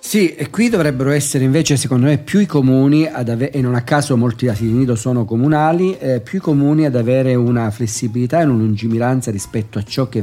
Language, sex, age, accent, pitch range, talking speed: Italian, male, 50-69, native, 110-140 Hz, 215 wpm